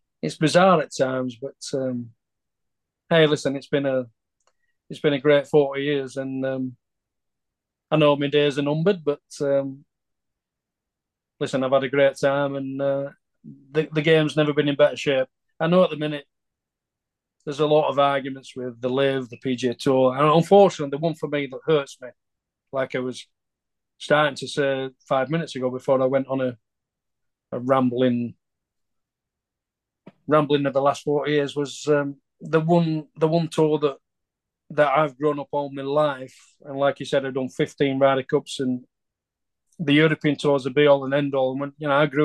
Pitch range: 130-150 Hz